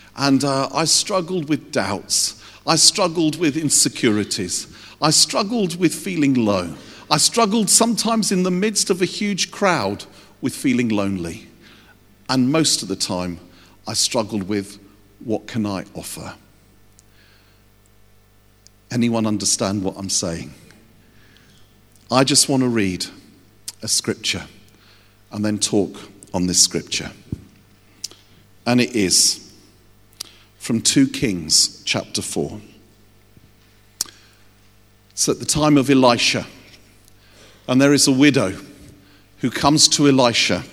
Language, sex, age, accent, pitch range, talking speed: English, male, 50-69, British, 105-155 Hz, 120 wpm